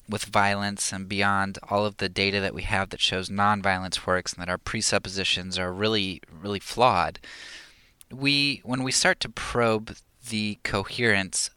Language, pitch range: English, 95-105 Hz